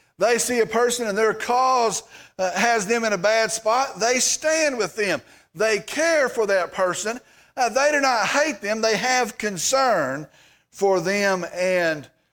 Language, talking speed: English, 165 wpm